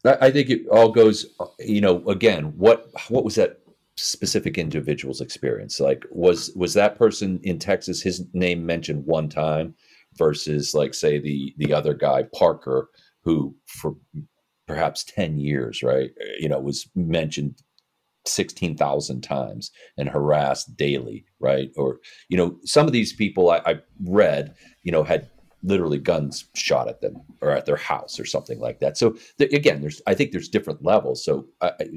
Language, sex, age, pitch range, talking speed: English, male, 40-59, 70-115 Hz, 165 wpm